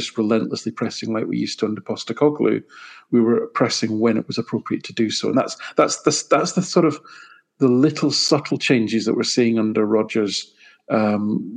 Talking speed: 185 wpm